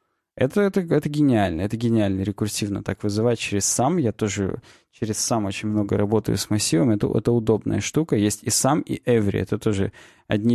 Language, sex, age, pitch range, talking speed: Russian, male, 20-39, 105-135 Hz, 180 wpm